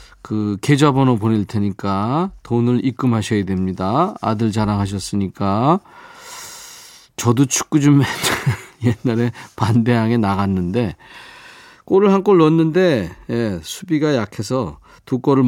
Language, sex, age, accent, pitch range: Korean, male, 40-59, native, 110-165 Hz